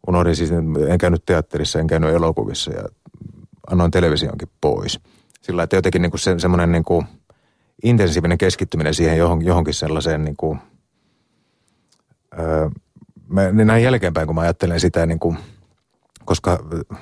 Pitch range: 80-90 Hz